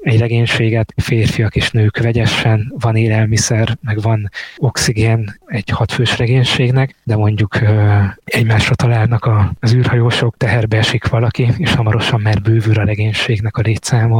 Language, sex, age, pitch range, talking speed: Hungarian, male, 20-39, 110-125 Hz, 135 wpm